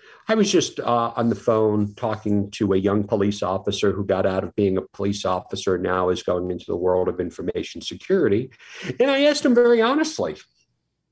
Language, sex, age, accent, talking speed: English, male, 50-69, American, 195 wpm